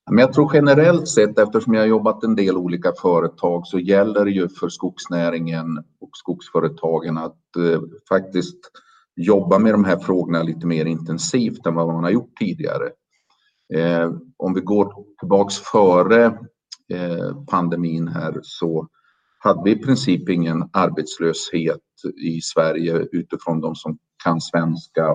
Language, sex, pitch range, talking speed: Swedish, male, 80-100 Hz, 145 wpm